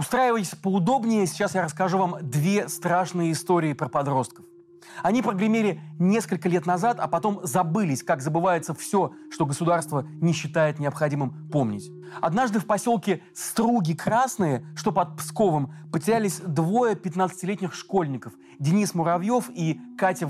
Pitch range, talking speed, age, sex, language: 155-195 Hz, 130 wpm, 30-49, male, Russian